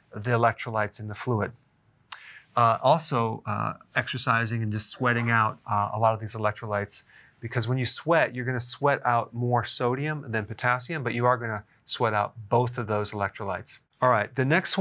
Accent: American